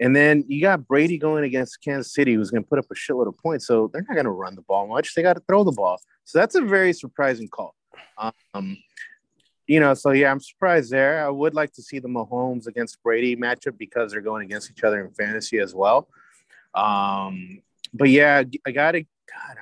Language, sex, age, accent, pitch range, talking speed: English, male, 30-49, American, 110-140 Hz, 225 wpm